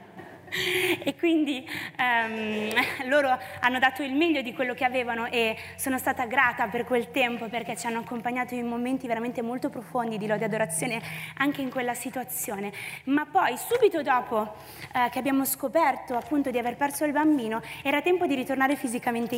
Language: Italian